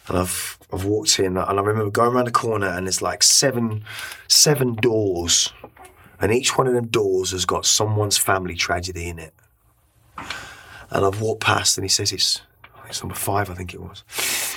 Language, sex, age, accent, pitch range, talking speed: English, male, 20-39, British, 95-115 Hz, 190 wpm